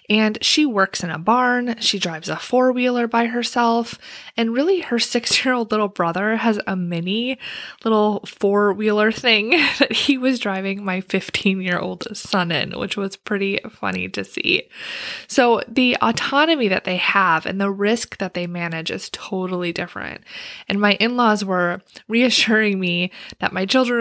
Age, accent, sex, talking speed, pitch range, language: 20-39, American, female, 155 wpm, 180-235 Hz, English